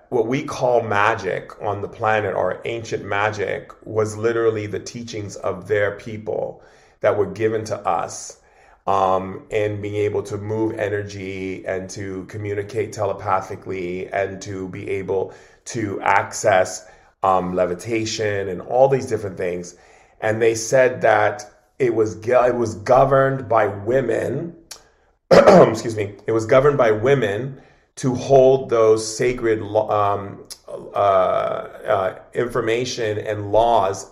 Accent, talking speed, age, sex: American, 130 wpm, 30-49, male